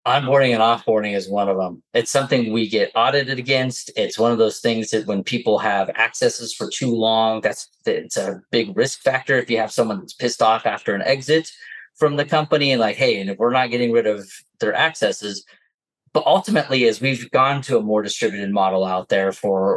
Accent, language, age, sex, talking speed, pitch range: American, English, 30-49, male, 210 wpm, 110-135 Hz